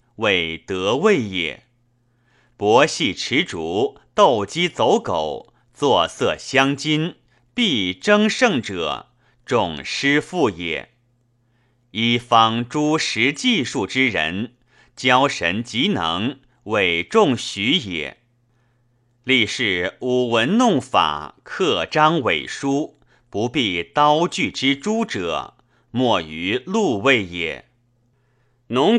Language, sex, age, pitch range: Chinese, male, 30-49, 120-135 Hz